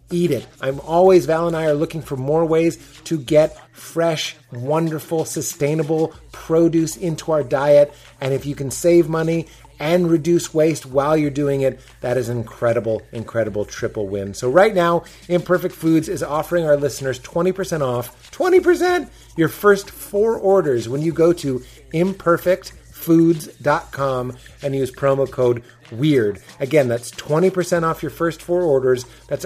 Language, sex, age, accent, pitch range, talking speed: English, male, 30-49, American, 125-165 Hz, 155 wpm